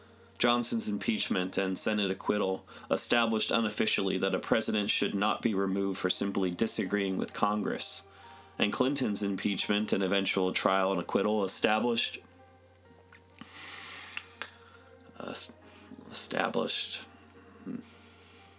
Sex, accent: male, American